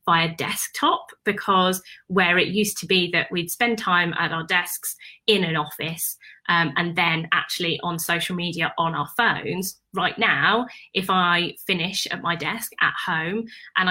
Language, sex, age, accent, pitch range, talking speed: English, female, 20-39, British, 170-205 Hz, 170 wpm